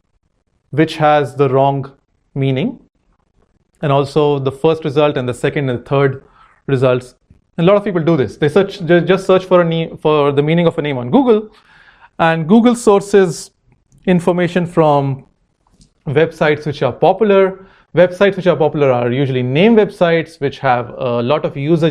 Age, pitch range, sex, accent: 30-49, 130-170 Hz, male, Indian